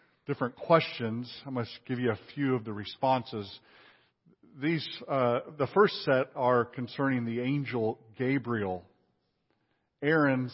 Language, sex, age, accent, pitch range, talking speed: English, male, 50-69, American, 120-150 Hz, 125 wpm